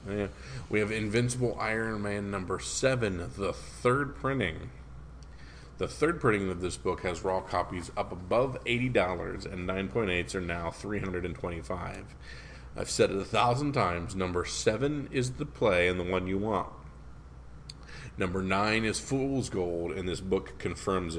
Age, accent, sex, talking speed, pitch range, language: 40-59, American, male, 155 wpm, 80-105 Hz, English